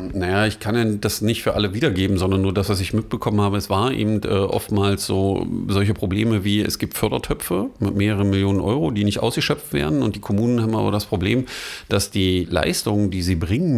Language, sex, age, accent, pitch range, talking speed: German, male, 40-59, German, 95-110 Hz, 205 wpm